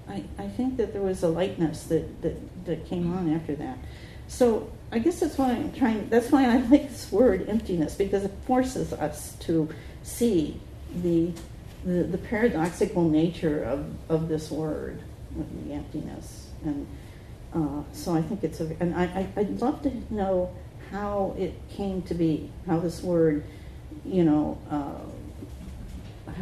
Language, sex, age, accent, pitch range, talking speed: English, female, 50-69, American, 145-180 Hz, 160 wpm